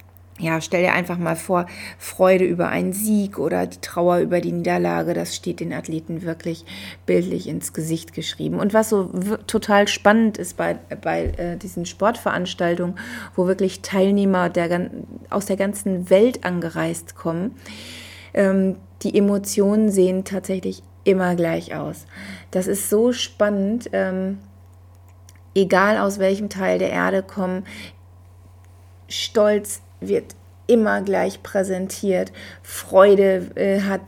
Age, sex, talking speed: 30-49, female, 130 wpm